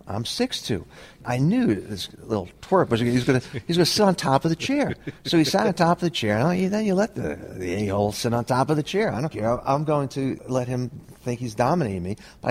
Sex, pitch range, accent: male, 105-160 Hz, American